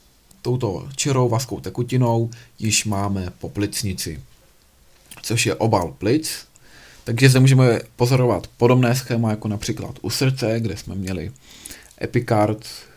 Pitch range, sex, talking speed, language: 105-125 Hz, male, 120 wpm, Czech